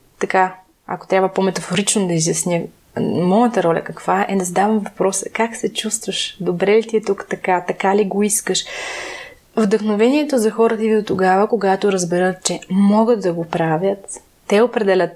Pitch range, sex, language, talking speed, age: 185-220 Hz, female, Bulgarian, 165 wpm, 20-39